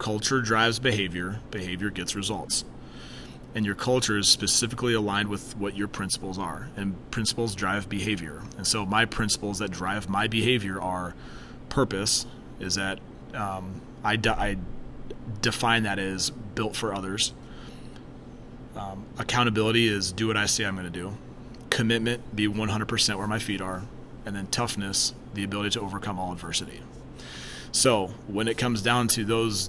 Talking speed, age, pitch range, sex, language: 155 wpm, 30-49, 100-115 Hz, male, English